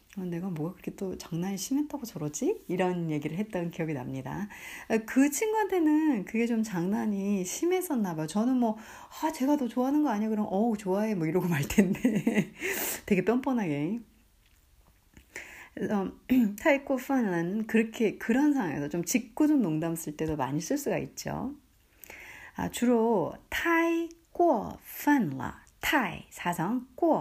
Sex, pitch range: female, 175-270 Hz